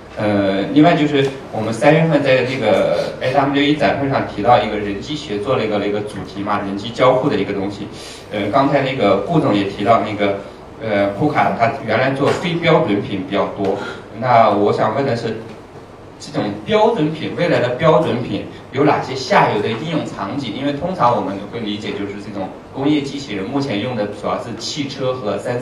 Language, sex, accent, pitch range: Chinese, male, native, 100-140 Hz